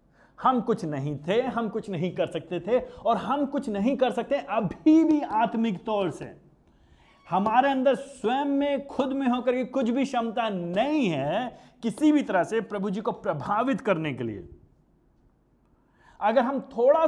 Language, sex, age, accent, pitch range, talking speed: Hindi, male, 30-49, native, 165-260 Hz, 170 wpm